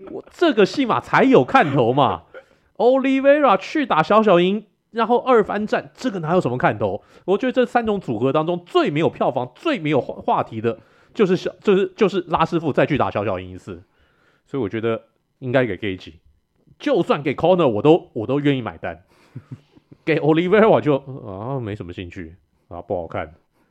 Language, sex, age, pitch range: Chinese, male, 30-49, 115-185 Hz